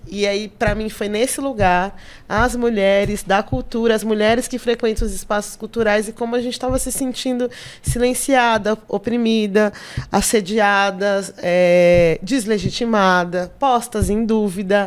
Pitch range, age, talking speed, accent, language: 190-230 Hz, 20-39, 130 wpm, Brazilian, Portuguese